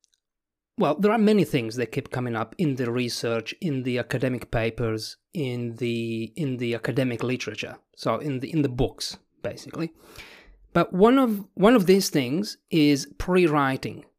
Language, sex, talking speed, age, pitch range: English, male, 160 wpm, 30-49, 130-180 Hz